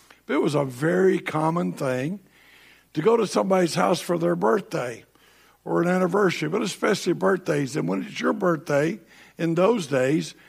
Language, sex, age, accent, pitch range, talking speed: English, male, 60-79, American, 150-180 Hz, 160 wpm